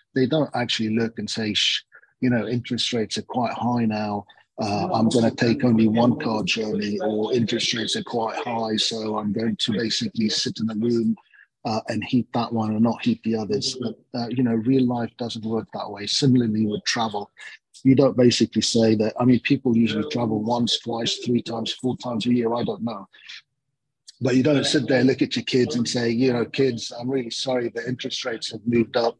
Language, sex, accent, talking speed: English, male, British, 220 wpm